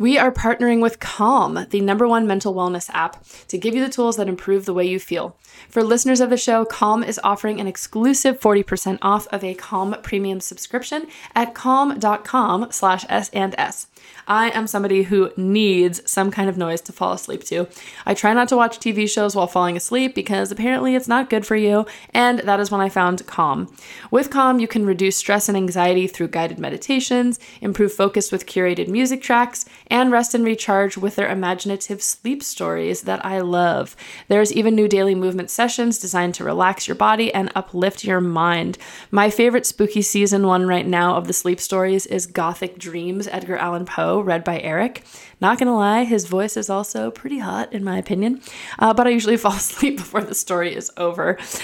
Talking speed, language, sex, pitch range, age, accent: 195 wpm, English, female, 185-230 Hz, 20-39, American